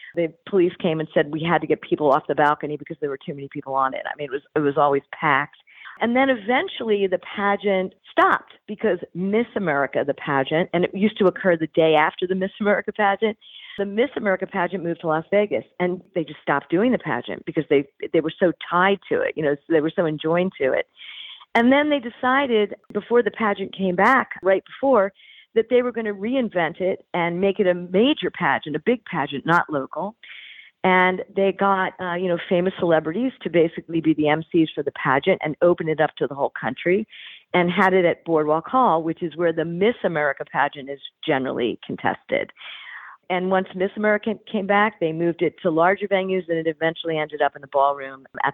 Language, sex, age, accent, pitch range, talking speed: English, female, 50-69, American, 155-205 Hz, 215 wpm